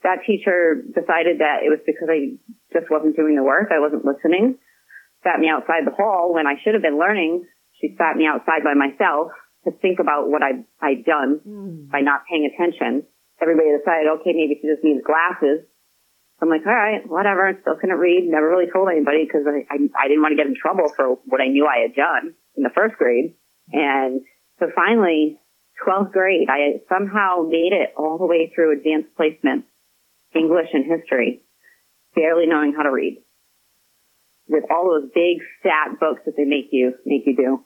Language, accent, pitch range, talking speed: English, American, 150-190 Hz, 190 wpm